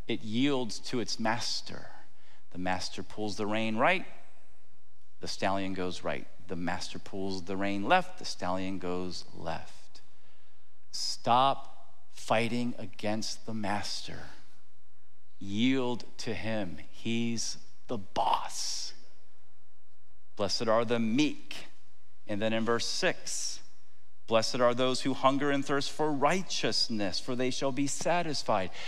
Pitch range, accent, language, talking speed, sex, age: 95-145 Hz, American, English, 125 wpm, male, 40-59